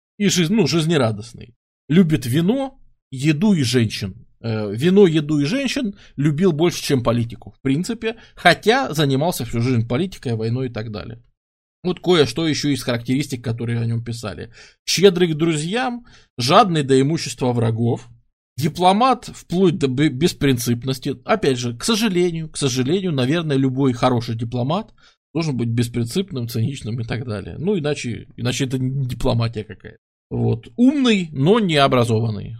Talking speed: 140 wpm